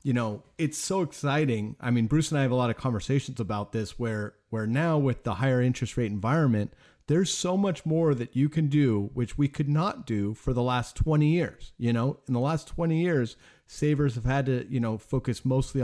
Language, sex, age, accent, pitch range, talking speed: English, male, 30-49, American, 120-155 Hz, 225 wpm